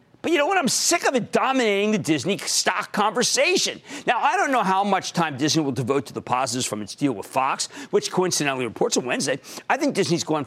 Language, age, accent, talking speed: English, 50-69, American, 230 wpm